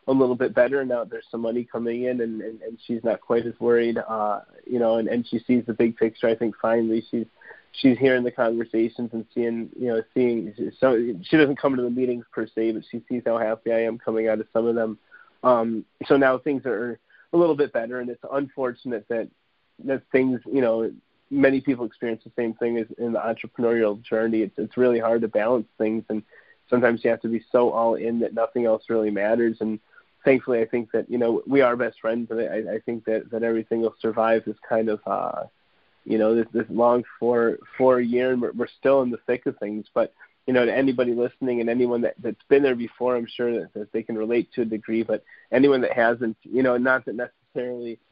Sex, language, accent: male, English, American